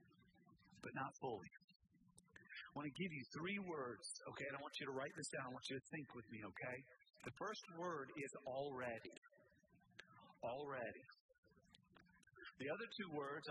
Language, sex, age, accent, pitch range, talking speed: English, male, 50-69, American, 130-195 Hz, 165 wpm